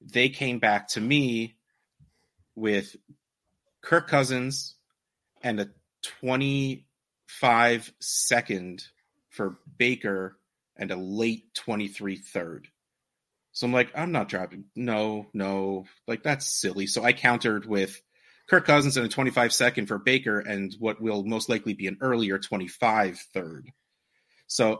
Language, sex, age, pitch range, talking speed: English, male, 30-49, 105-130 Hz, 130 wpm